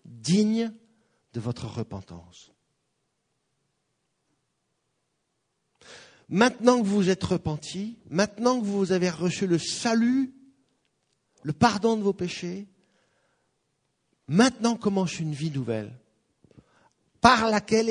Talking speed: 95 wpm